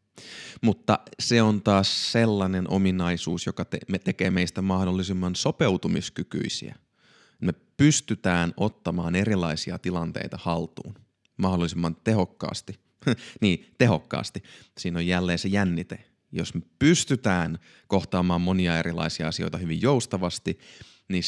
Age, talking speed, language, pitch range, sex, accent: 30-49, 105 wpm, Finnish, 90-110 Hz, male, native